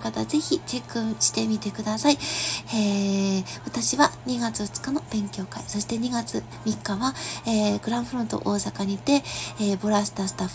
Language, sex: Japanese, female